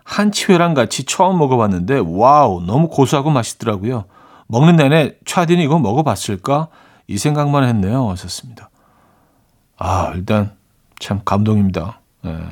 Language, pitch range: Korean, 105-165 Hz